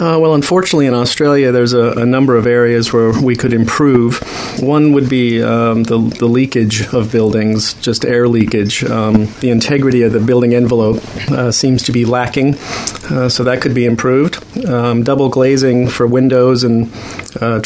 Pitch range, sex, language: 115-125 Hz, male, English